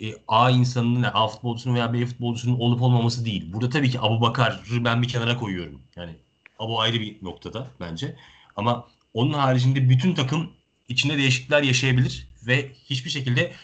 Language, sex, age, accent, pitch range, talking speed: Turkish, male, 40-59, native, 110-130 Hz, 165 wpm